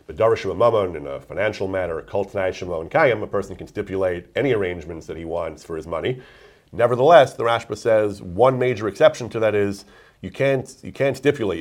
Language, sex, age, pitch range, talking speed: English, male, 40-59, 85-110 Hz, 175 wpm